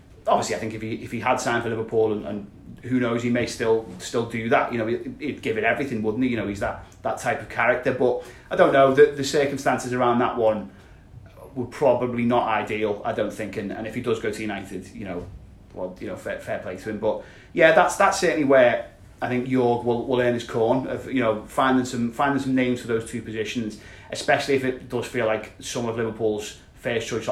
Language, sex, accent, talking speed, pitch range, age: English, male, British, 240 wpm, 105-120 Hz, 30-49